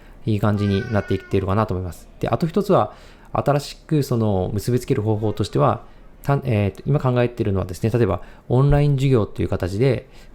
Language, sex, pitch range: Japanese, male, 95-125 Hz